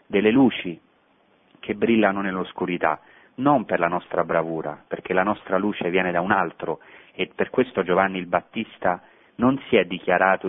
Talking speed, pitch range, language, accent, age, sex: 160 wpm, 85-100 Hz, Italian, native, 40-59, male